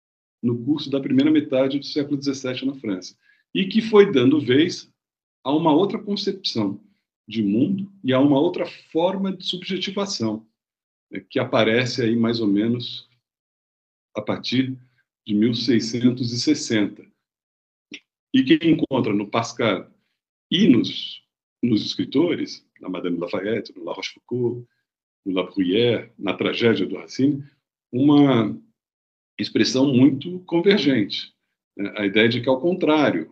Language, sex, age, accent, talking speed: Portuguese, male, 50-69, Brazilian, 130 wpm